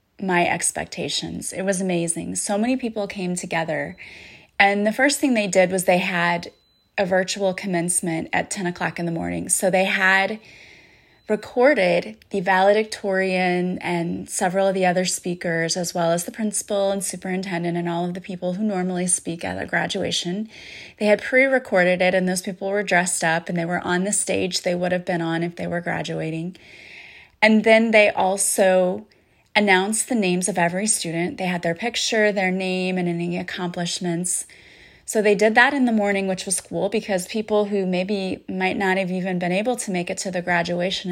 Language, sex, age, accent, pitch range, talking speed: English, female, 30-49, American, 180-210 Hz, 185 wpm